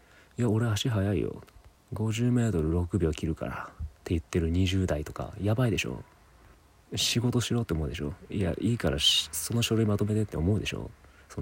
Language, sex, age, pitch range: Japanese, male, 30-49, 85-115 Hz